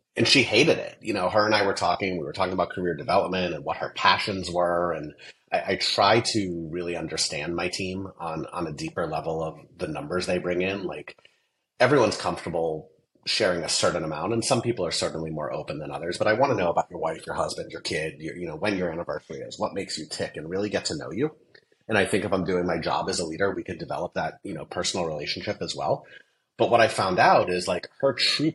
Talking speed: 245 wpm